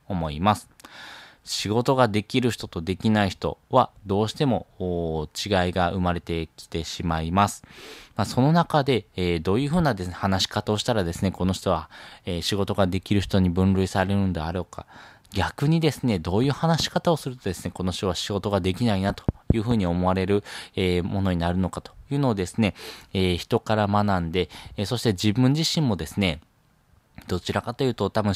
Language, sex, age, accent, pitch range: Japanese, male, 20-39, native, 90-115 Hz